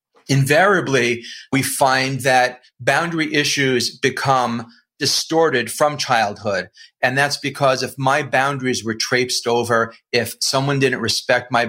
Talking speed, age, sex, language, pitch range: 125 wpm, 30-49, male, English, 120-150 Hz